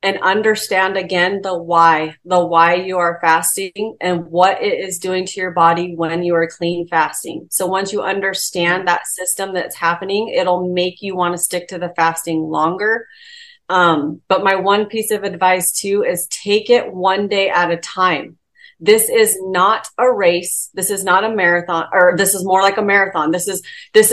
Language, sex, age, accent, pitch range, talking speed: English, female, 30-49, American, 180-225 Hz, 190 wpm